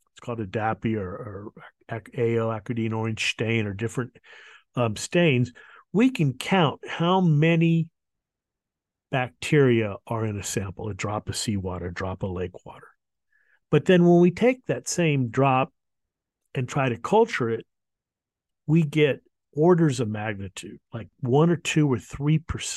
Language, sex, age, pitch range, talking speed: English, male, 50-69, 115-155 Hz, 145 wpm